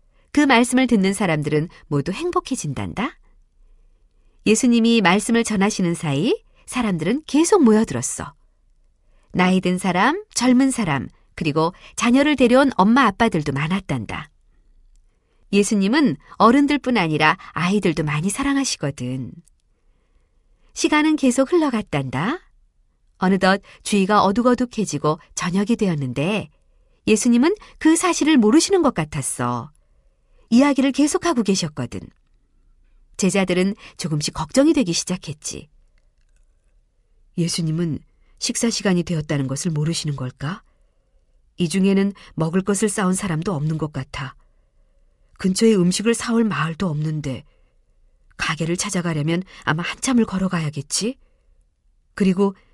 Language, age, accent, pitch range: Korean, 40-59, native, 155-230 Hz